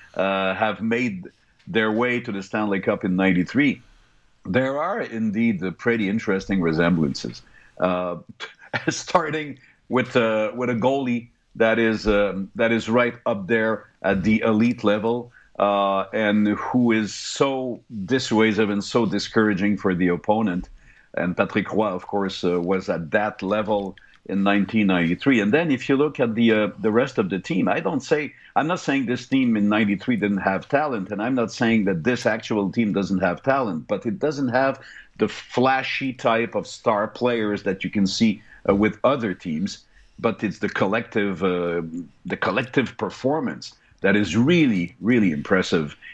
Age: 50-69